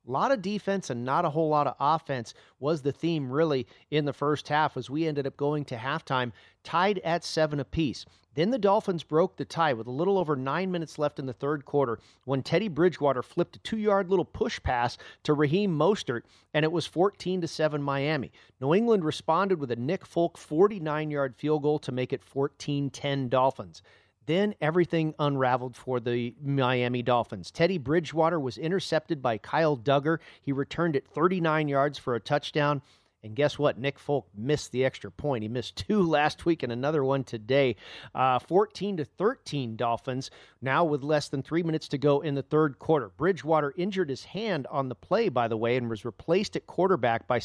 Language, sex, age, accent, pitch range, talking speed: English, male, 40-59, American, 130-160 Hz, 190 wpm